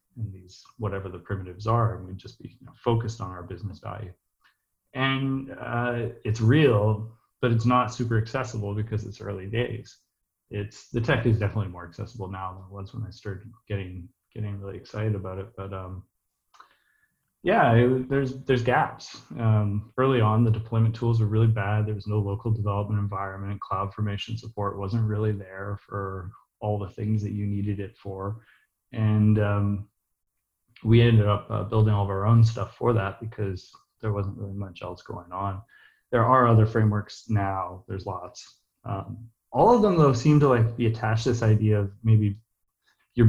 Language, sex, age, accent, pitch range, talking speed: English, male, 30-49, American, 100-120 Hz, 175 wpm